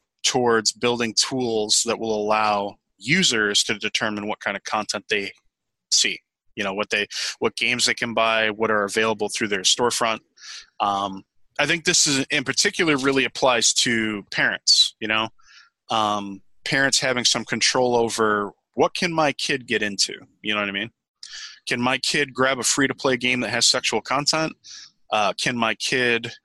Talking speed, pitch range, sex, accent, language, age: 175 wpm, 110-140 Hz, male, American, English, 20-39